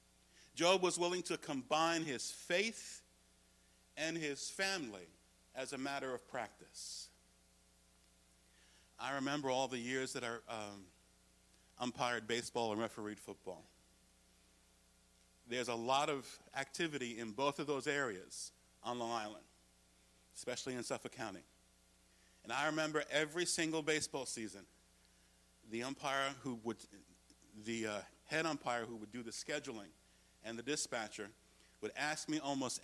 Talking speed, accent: 130 wpm, American